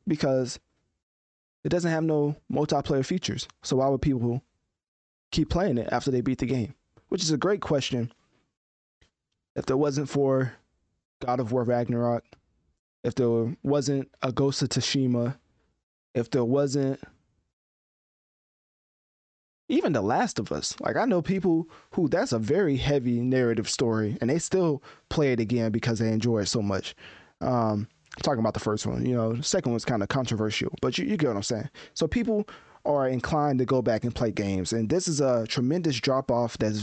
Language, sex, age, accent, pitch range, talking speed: English, male, 20-39, American, 110-140 Hz, 180 wpm